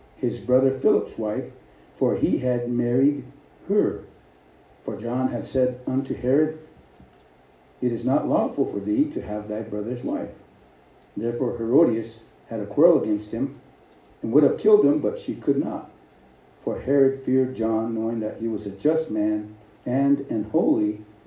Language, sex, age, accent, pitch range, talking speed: English, male, 60-79, American, 120-165 Hz, 155 wpm